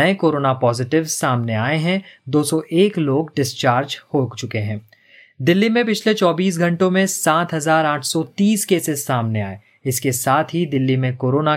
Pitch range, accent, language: 130-170 Hz, native, Hindi